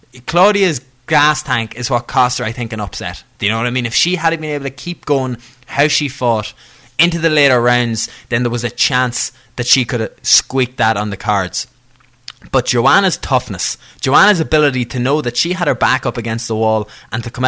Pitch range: 110-130 Hz